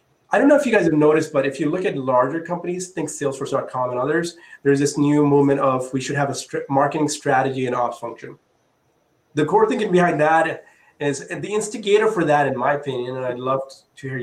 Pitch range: 130-160 Hz